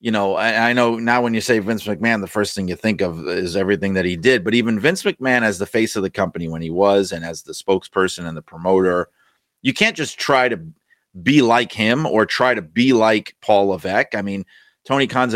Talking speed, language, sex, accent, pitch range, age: 240 wpm, English, male, American, 100-130 Hz, 30-49